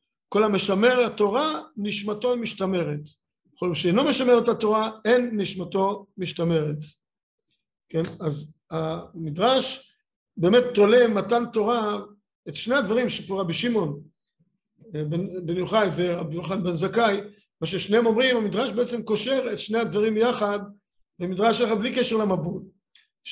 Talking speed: 120 wpm